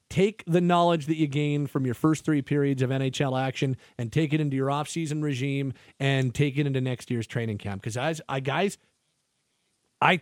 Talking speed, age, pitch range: 205 wpm, 40-59, 140-175 Hz